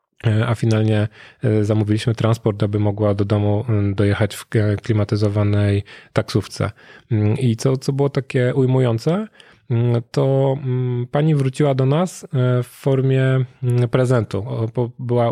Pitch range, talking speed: 110-135 Hz, 105 wpm